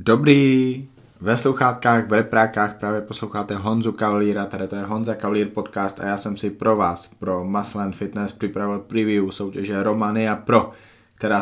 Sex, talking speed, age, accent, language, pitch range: male, 160 wpm, 20-39, native, Czech, 100-110 Hz